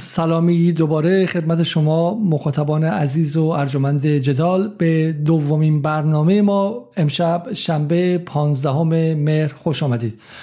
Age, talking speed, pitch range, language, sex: 50-69, 110 wpm, 150-175 Hz, Persian, male